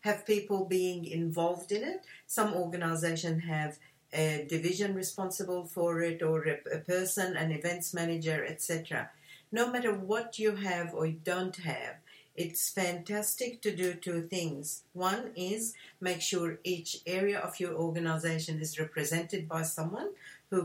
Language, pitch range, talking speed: English, 165-200 Hz, 145 wpm